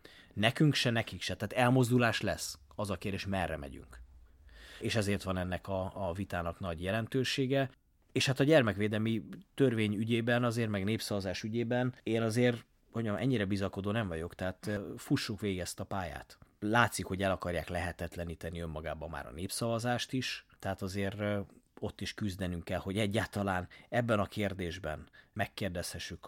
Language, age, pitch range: Hungarian, 30-49, 85-110 Hz